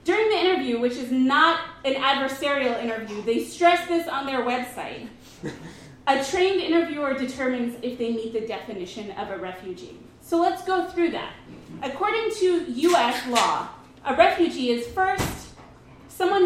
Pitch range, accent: 235-330 Hz, American